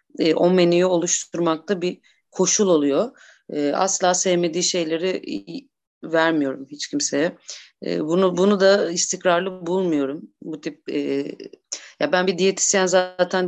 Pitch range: 160-180 Hz